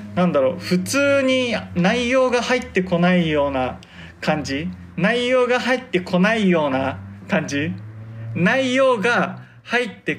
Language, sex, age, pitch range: Japanese, male, 20-39, 145-185 Hz